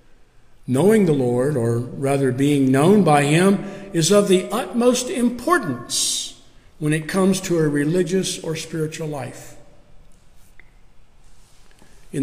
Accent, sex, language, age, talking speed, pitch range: American, male, English, 50-69, 120 wpm, 140-185 Hz